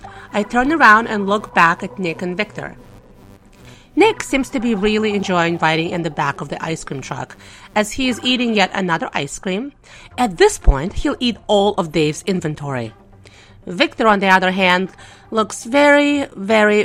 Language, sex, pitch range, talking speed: English, female, 165-280 Hz, 180 wpm